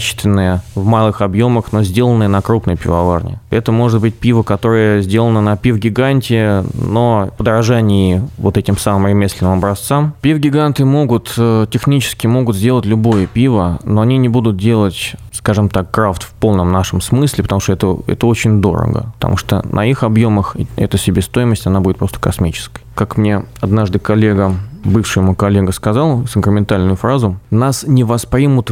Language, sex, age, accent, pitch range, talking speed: Russian, male, 20-39, native, 95-115 Hz, 155 wpm